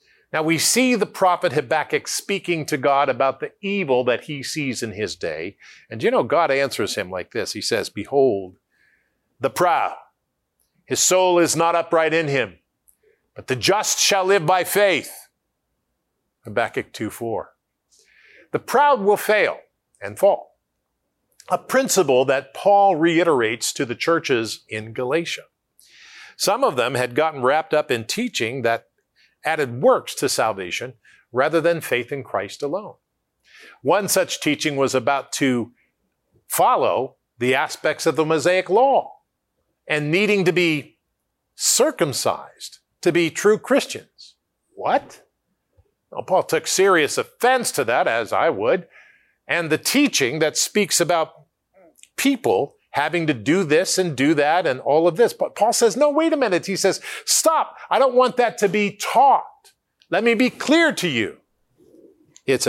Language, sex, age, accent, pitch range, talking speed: English, male, 50-69, American, 140-225 Hz, 150 wpm